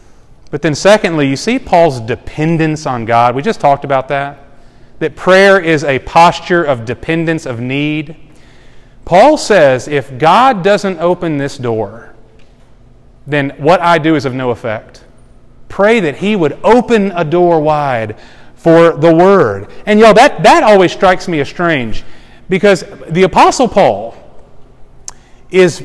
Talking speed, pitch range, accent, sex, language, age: 145 wpm, 140-205 Hz, American, male, English, 40-59